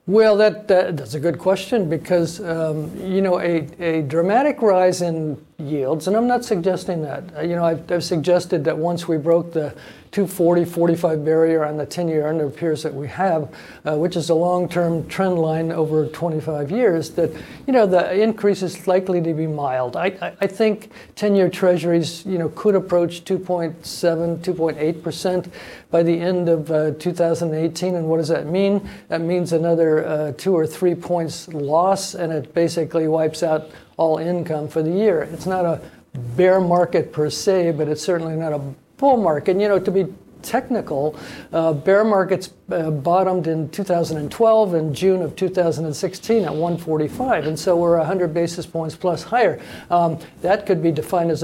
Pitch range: 160-185 Hz